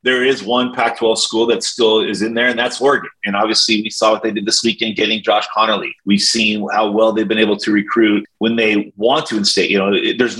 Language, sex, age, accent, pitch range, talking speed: English, male, 30-49, American, 110-140 Hz, 250 wpm